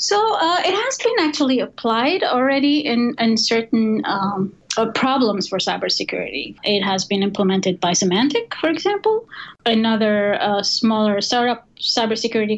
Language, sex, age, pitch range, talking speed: English, female, 30-49, 210-260 Hz, 140 wpm